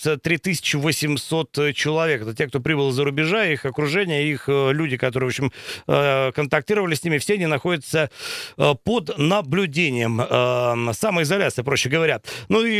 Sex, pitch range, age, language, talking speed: male, 150-175 Hz, 50-69, Russian, 130 wpm